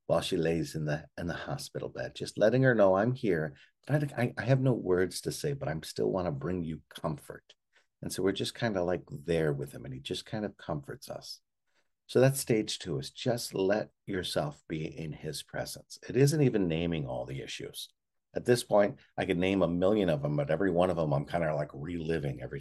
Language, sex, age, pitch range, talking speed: English, male, 50-69, 75-120 Hz, 230 wpm